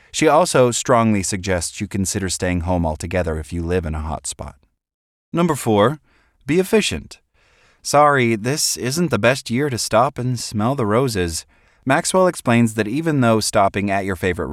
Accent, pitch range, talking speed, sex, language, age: American, 85-130 Hz, 170 wpm, male, English, 30-49